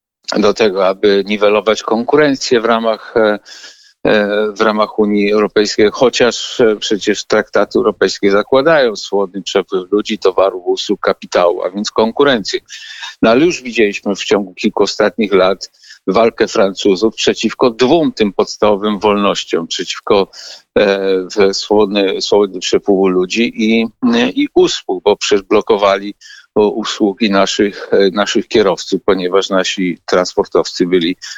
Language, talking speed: Polish, 115 wpm